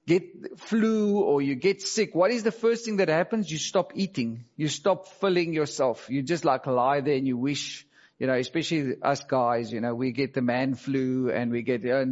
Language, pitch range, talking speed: English, 130-175 Hz, 220 wpm